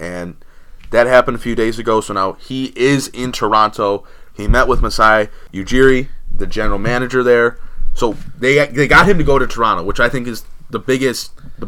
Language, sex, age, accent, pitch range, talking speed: English, male, 20-39, American, 110-135 Hz, 185 wpm